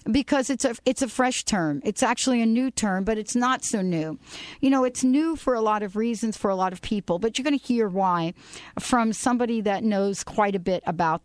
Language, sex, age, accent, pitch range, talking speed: English, female, 50-69, American, 200-250 Hz, 235 wpm